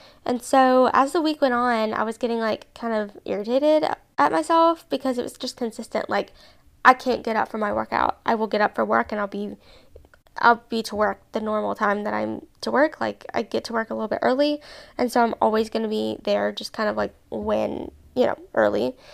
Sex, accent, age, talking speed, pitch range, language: female, American, 10-29, 230 wpm, 215-260 Hz, English